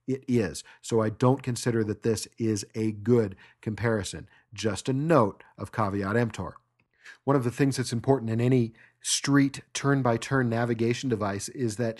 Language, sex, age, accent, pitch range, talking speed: English, male, 40-59, American, 110-140 Hz, 160 wpm